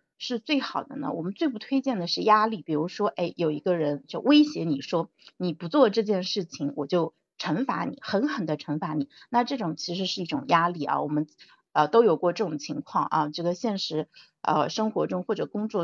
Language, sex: Chinese, female